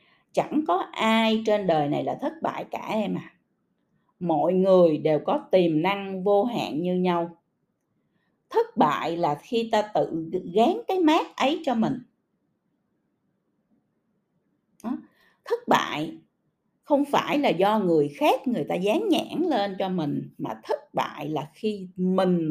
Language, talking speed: Vietnamese, 145 wpm